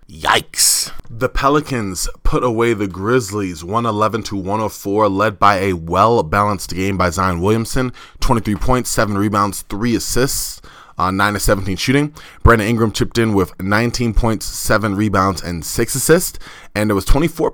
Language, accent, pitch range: English, American, 100-125 Hz